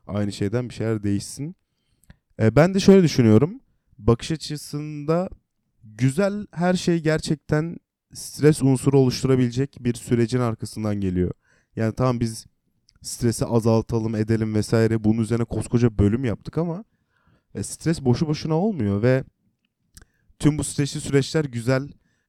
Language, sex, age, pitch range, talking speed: Turkish, male, 30-49, 105-140 Hz, 125 wpm